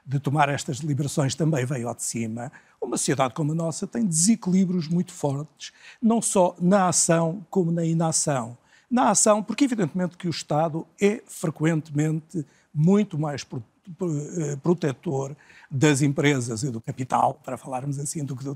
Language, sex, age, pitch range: Portuguese, male, 50-69, 145-180 Hz